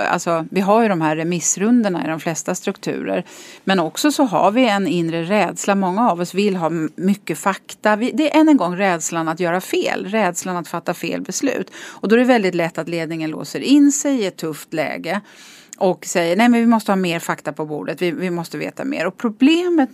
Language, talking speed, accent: English, 215 wpm, Swedish